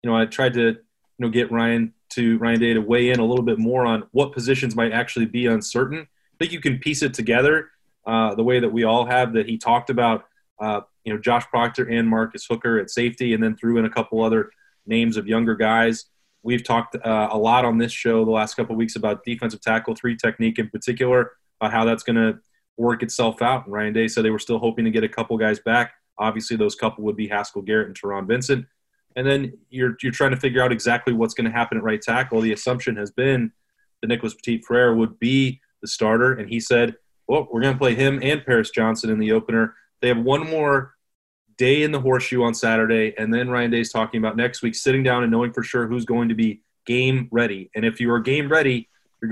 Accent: American